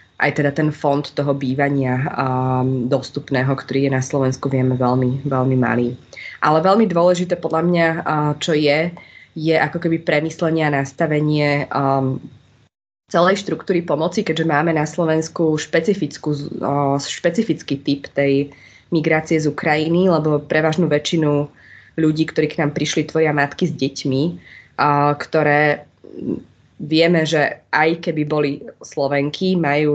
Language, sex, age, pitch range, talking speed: Slovak, female, 20-39, 140-160 Hz, 120 wpm